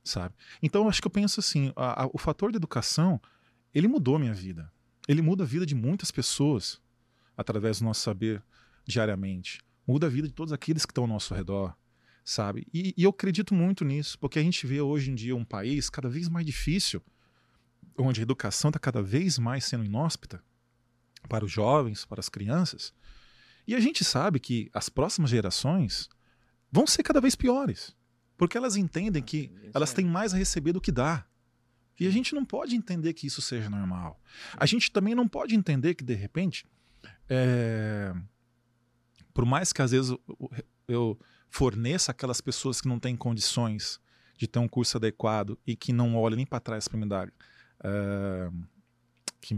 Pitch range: 115-170 Hz